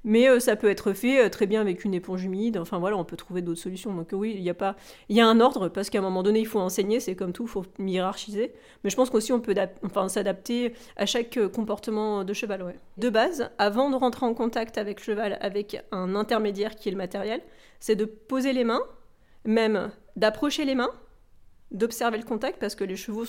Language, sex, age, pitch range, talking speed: French, female, 30-49, 195-235 Hz, 230 wpm